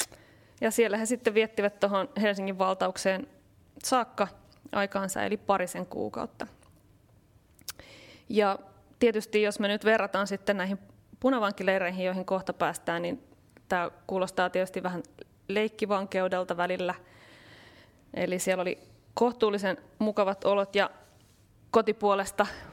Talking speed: 105 wpm